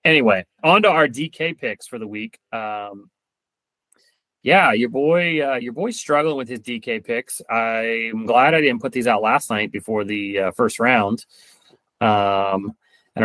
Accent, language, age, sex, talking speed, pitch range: American, English, 30-49, male, 170 wpm, 105-135 Hz